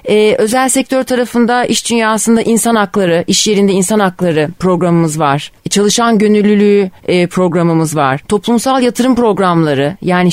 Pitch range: 165-210 Hz